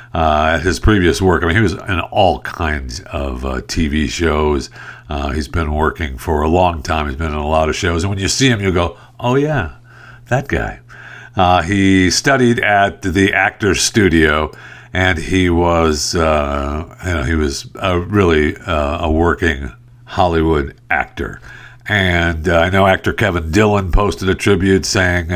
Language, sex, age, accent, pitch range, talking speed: English, male, 60-79, American, 80-120 Hz, 165 wpm